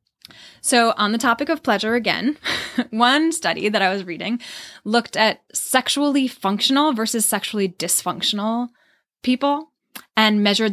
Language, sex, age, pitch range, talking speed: English, female, 20-39, 190-240 Hz, 130 wpm